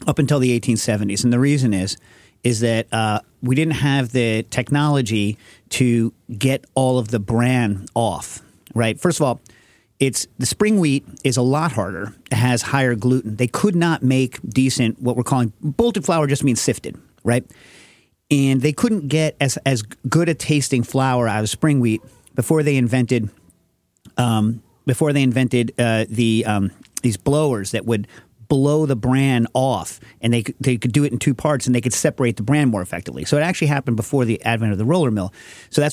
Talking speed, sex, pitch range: 190 wpm, male, 115-140 Hz